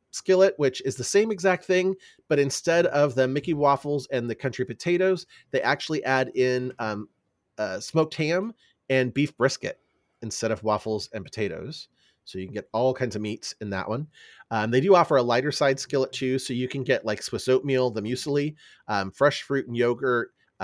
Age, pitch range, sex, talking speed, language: 30-49, 110-145 Hz, male, 195 wpm, English